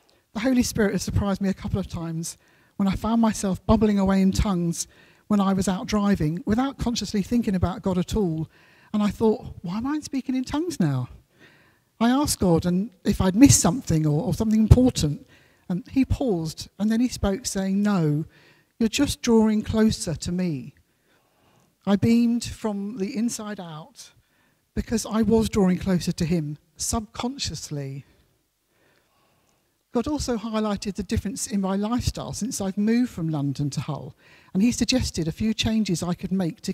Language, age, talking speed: English, 50-69, 170 wpm